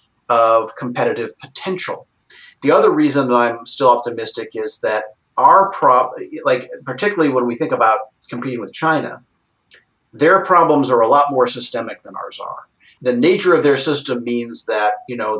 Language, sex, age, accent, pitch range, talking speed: English, male, 50-69, American, 120-155 Hz, 165 wpm